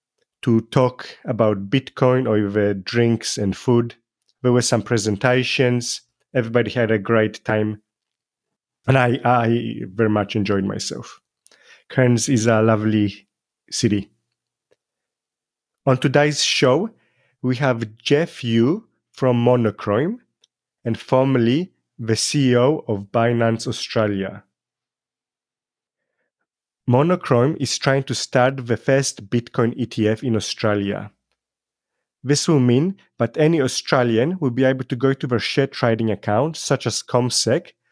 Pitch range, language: 110-130 Hz, English